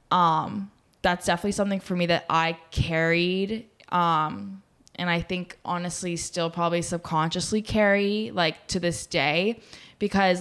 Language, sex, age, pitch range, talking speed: English, female, 10-29, 170-195 Hz, 135 wpm